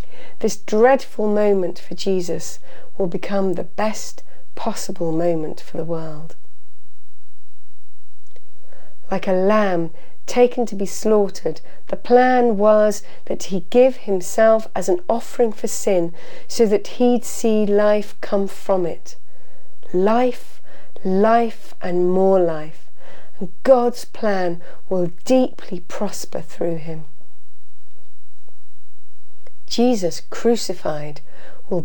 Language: English